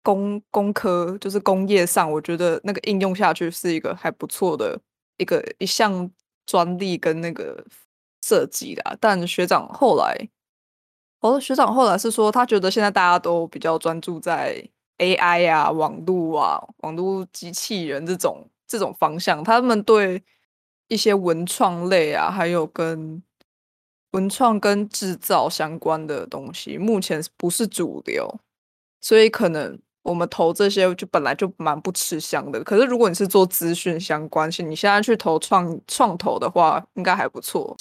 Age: 20-39